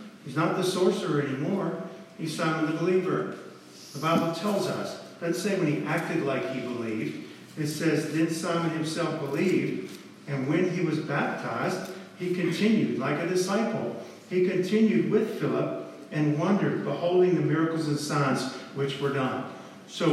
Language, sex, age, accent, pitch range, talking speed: English, male, 50-69, American, 145-180 Hz, 155 wpm